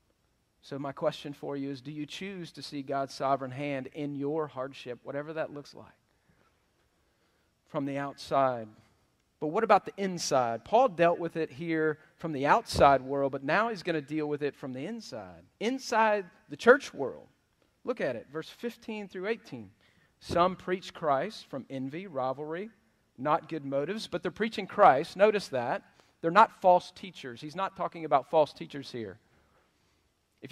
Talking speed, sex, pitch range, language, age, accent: 170 wpm, male, 140-185 Hz, English, 40-59, American